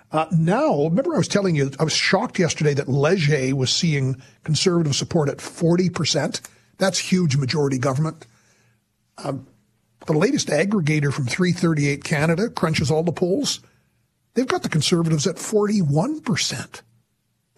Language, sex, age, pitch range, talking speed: English, male, 50-69, 140-180 Hz, 135 wpm